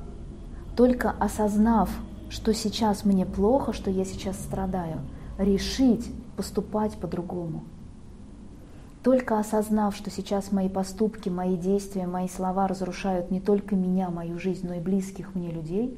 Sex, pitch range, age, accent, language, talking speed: female, 180-215 Hz, 20-39, native, Russian, 130 wpm